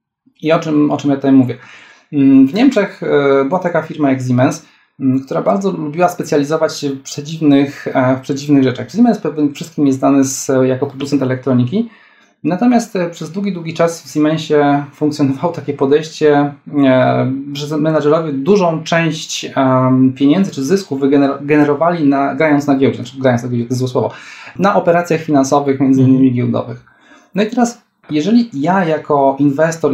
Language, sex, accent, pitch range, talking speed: Polish, male, native, 140-165 Hz, 150 wpm